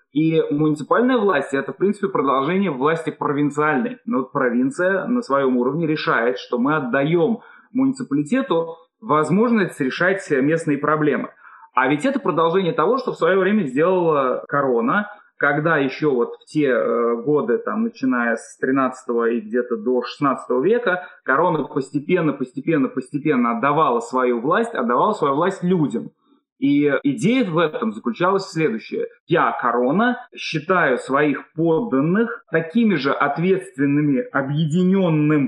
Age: 20-39